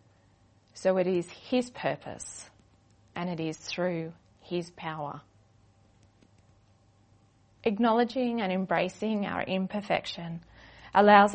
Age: 30-49